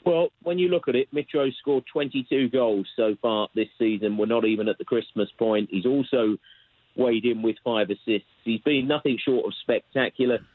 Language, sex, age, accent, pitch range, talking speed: English, male, 40-59, British, 105-130 Hz, 195 wpm